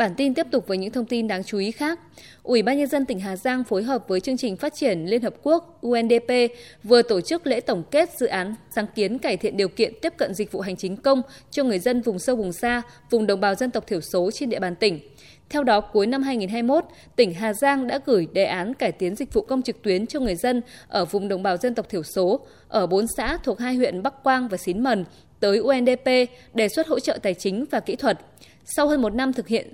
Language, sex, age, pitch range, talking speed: Vietnamese, female, 20-39, 200-265 Hz, 255 wpm